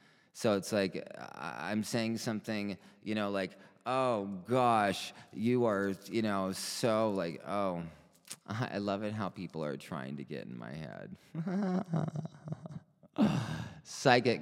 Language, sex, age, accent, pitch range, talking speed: English, male, 30-49, American, 90-115 Hz, 135 wpm